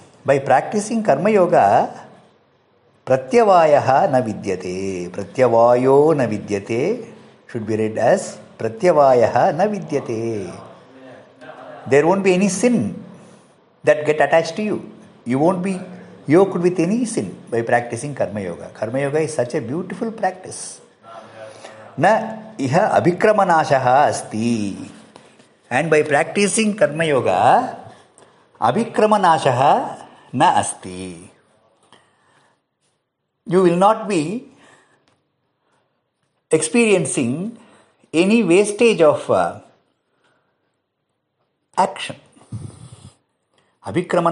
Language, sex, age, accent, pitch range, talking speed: English, male, 50-69, Indian, 120-195 Hz, 85 wpm